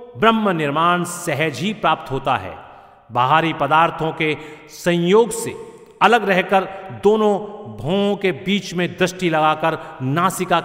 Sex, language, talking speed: male, Hindi, 125 wpm